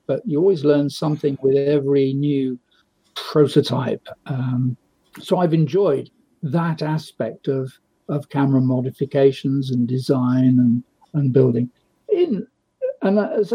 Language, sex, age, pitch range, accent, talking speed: English, male, 50-69, 135-165 Hz, British, 115 wpm